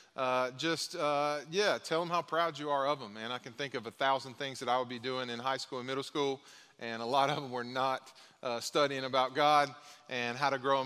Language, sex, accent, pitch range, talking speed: English, male, American, 130-165 Hz, 260 wpm